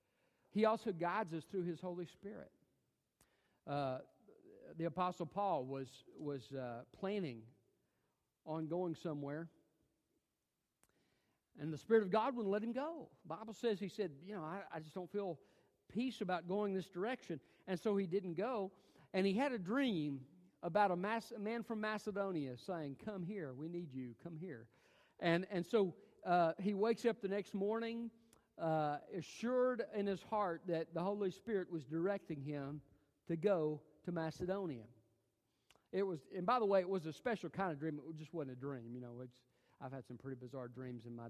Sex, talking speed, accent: male, 180 wpm, American